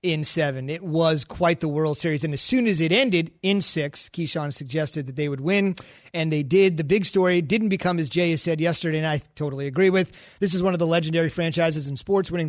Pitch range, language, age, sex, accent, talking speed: 160-195 Hz, English, 30-49, male, American, 240 wpm